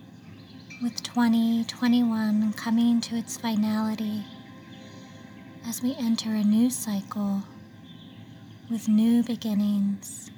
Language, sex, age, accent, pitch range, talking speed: English, female, 30-49, American, 195-220 Hz, 85 wpm